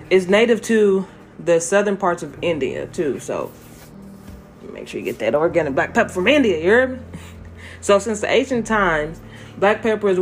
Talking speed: 170 wpm